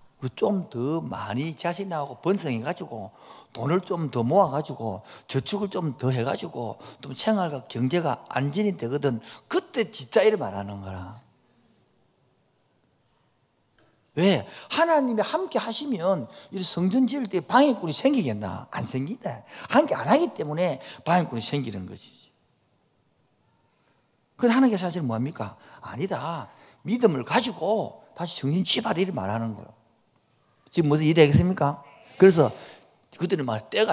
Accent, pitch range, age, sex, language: native, 120-195 Hz, 50-69, male, Korean